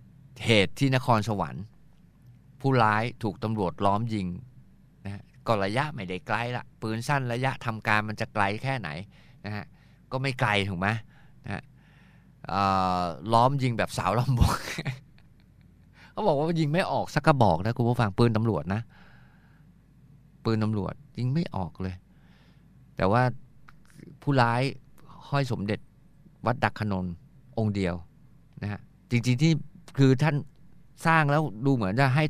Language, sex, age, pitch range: Thai, male, 20-39, 105-140 Hz